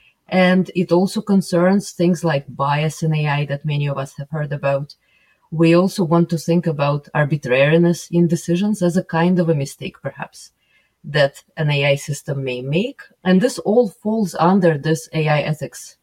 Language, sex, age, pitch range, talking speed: English, female, 20-39, 155-190 Hz, 170 wpm